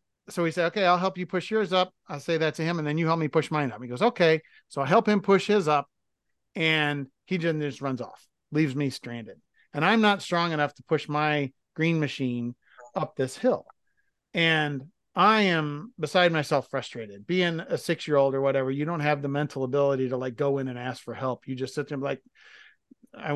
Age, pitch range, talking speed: 40-59, 140-190 Hz, 225 wpm